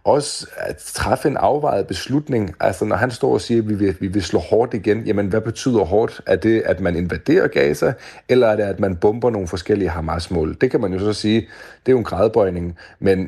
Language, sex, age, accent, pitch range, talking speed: Danish, male, 40-59, native, 90-110 Hz, 235 wpm